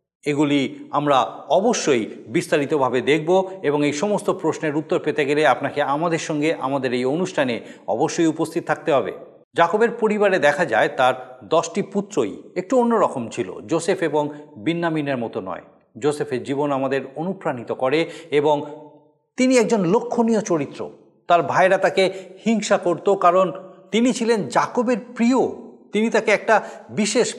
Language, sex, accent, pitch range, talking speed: Bengali, male, native, 145-200 Hz, 135 wpm